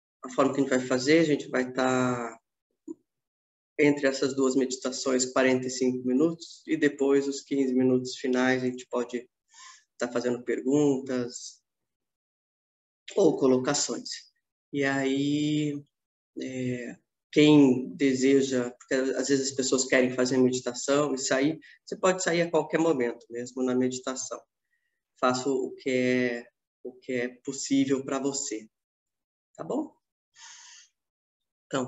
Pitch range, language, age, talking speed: 125-145 Hz, Portuguese, 20-39, 120 wpm